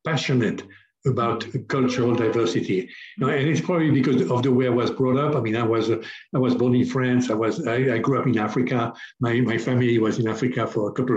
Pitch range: 120-145 Hz